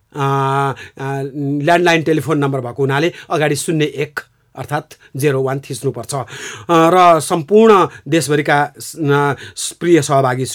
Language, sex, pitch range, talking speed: English, male, 140-170 Hz, 135 wpm